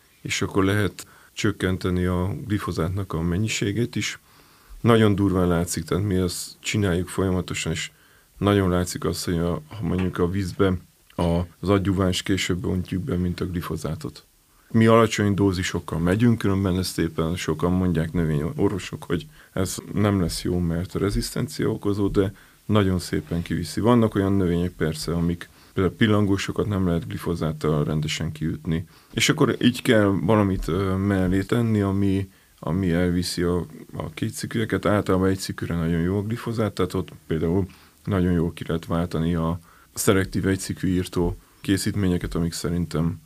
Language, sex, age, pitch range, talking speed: Hungarian, male, 30-49, 85-100 Hz, 145 wpm